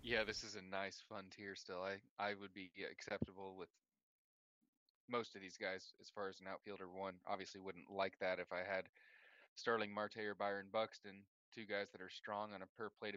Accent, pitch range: American, 95-105 Hz